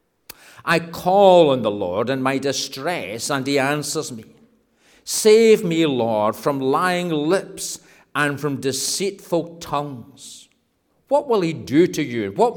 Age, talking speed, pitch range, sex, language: 50-69, 140 wpm, 125-170 Hz, male, English